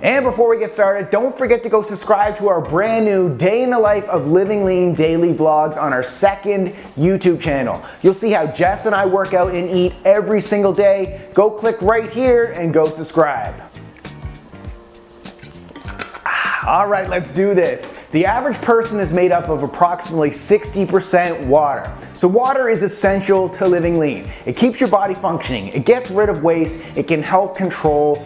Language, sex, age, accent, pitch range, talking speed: English, male, 30-49, American, 155-205 Hz, 180 wpm